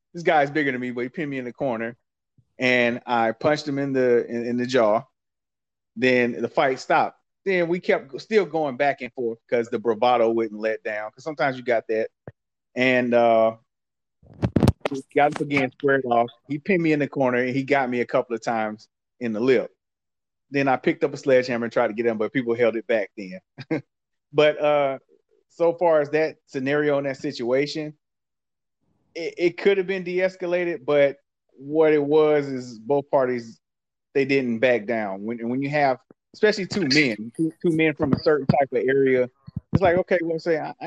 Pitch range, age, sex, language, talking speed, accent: 120-155 Hz, 30-49, male, English, 200 wpm, American